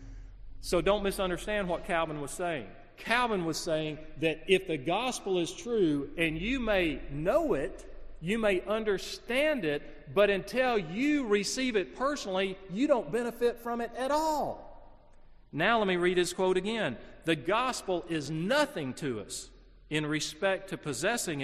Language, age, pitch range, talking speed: English, 40-59, 155-225 Hz, 155 wpm